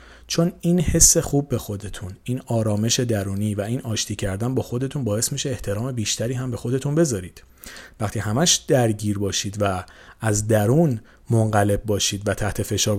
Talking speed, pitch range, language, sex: 160 wpm, 105-140 Hz, Persian, male